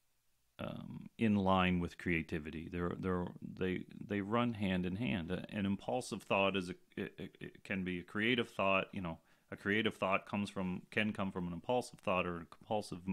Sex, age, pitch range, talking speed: male, 40-59, 85-105 Hz, 185 wpm